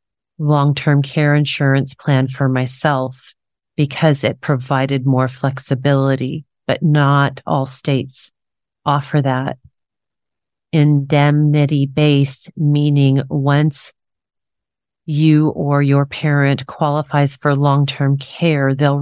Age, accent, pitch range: 40-59, American, 135-155 Hz